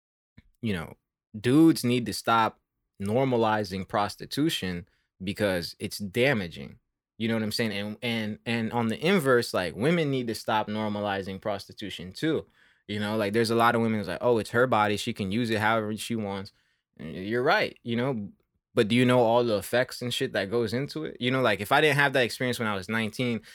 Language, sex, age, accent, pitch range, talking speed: English, male, 20-39, American, 105-135 Hz, 210 wpm